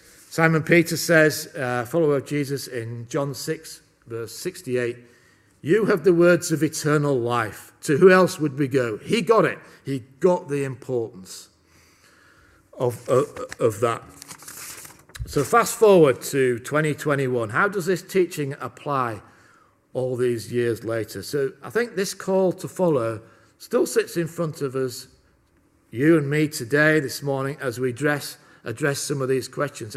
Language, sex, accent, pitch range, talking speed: English, male, British, 115-155 Hz, 155 wpm